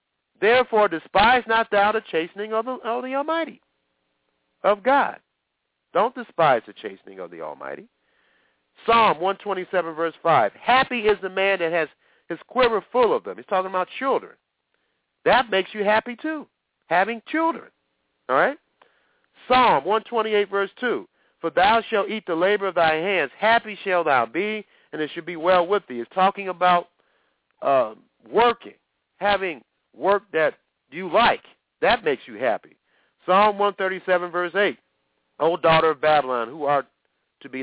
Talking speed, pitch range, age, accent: 155 wpm, 130-205 Hz, 50-69, American